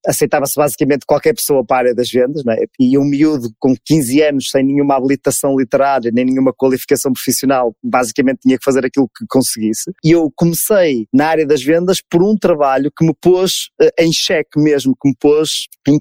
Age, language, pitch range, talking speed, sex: 20-39, Portuguese, 135-175 Hz, 195 wpm, male